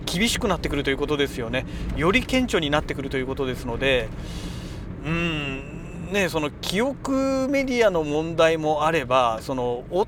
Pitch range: 130-180 Hz